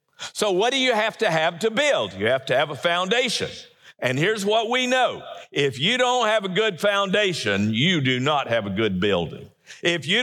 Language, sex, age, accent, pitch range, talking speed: English, male, 50-69, American, 150-215 Hz, 210 wpm